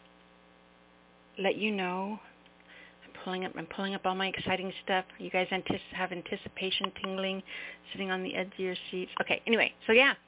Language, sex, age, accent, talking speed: English, female, 50-69, American, 170 wpm